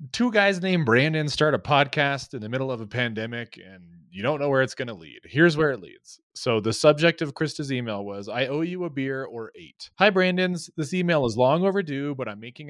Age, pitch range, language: 30-49, 105-145 Hz, English